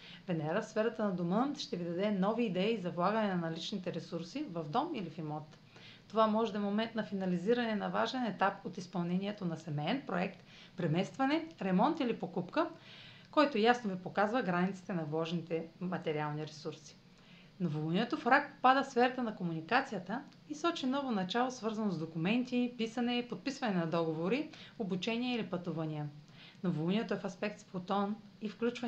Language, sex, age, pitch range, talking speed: Bulgarian, female, 40-59, 175-240 Hz, 160 wpm